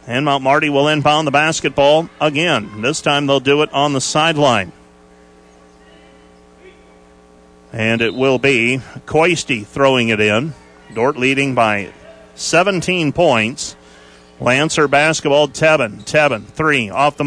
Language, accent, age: English, American, 40-59